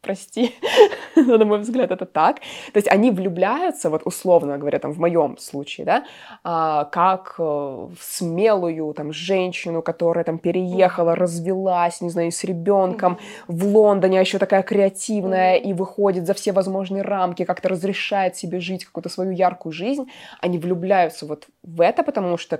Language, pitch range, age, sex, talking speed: Russian, 170-210 Hz, 20-39, female, 155 wpm